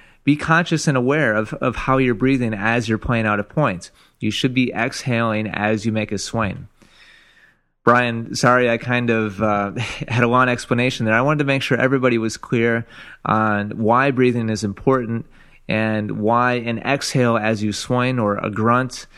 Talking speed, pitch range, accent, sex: 180 wpm, 110-130 Hz, American, male